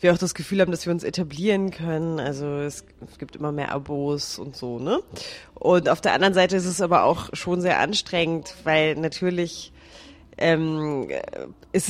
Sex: female